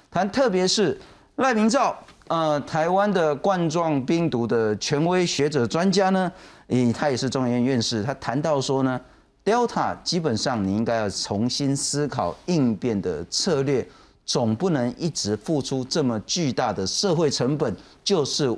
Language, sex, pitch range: Chinese, male, 120-180 Hz